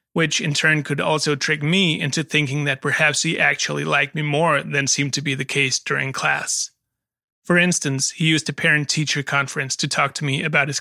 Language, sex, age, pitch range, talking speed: English, male, 30-49, 140-160 Hz, 205 wpm